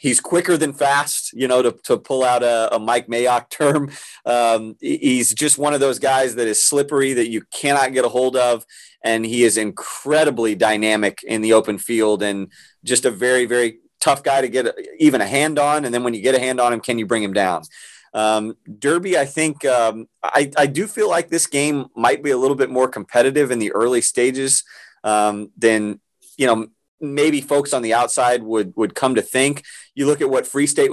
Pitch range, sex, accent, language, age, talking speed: 120-140 Hz, male, American, English, 30-49, 215 wpm